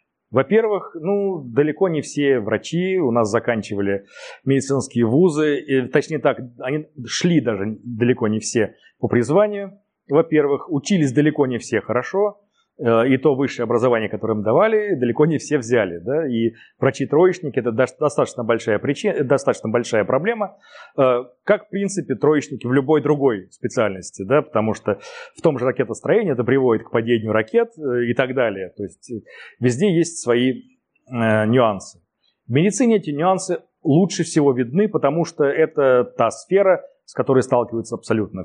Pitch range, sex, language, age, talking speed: 120-175 Hz, male, Russian, 30-49, 140 wpm